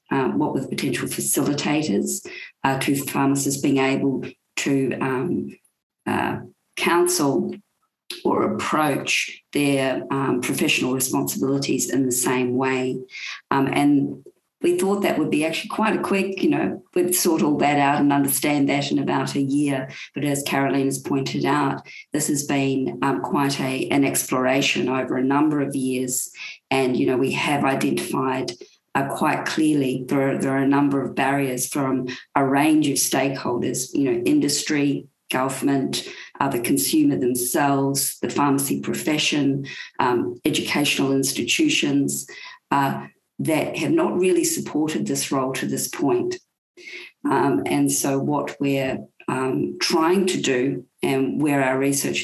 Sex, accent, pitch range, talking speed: female, Australian, 135-160 Hz, 145 wpm